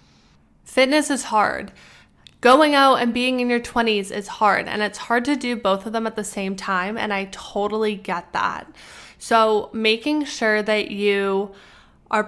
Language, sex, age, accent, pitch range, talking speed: English, female, 10-29, American, 200-235 Hz, 170 wpm